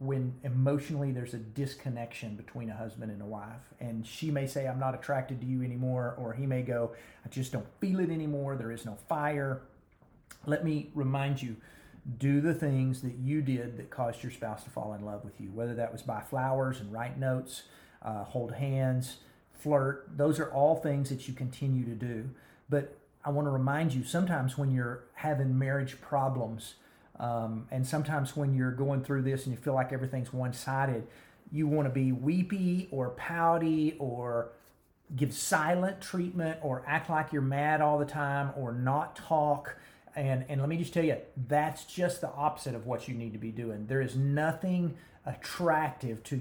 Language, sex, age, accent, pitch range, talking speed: English, male, 40-59, American, 120-145 Hz, 190 wpm